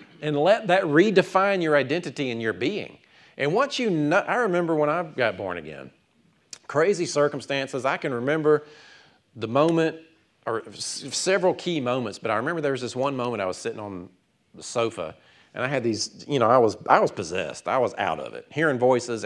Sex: male